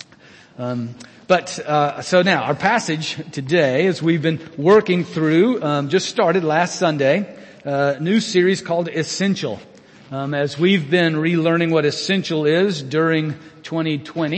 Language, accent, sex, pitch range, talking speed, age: English, American, male, 140-170 Hz, 140 wpm, 40-59